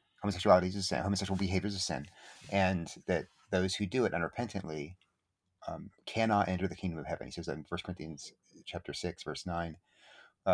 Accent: American